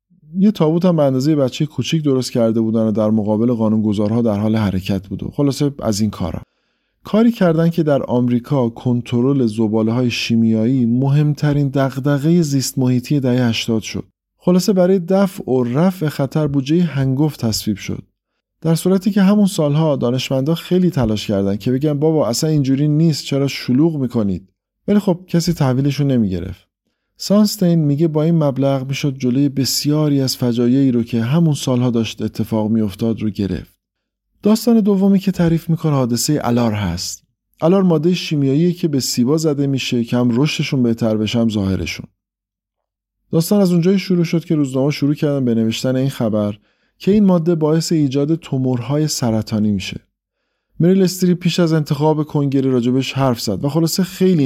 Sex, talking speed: male, 155 wpm